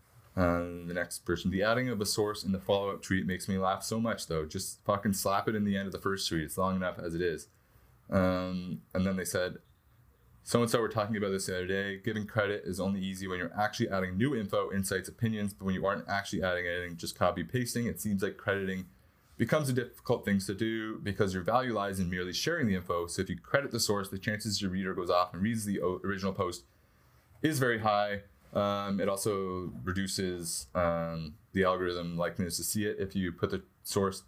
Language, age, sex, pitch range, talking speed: English, 20-39, male, 90-105 Hz, 220 wpm